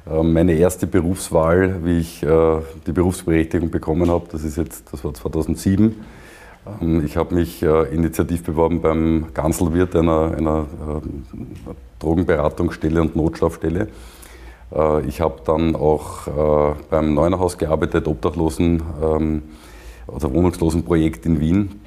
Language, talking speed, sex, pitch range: German, 110 wpm, male, 75-85 Hz